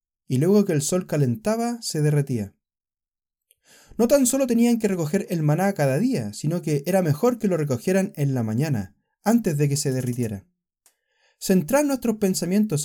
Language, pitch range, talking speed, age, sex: Spanish, 125-200 Hz, 170 wpm, 20-39, male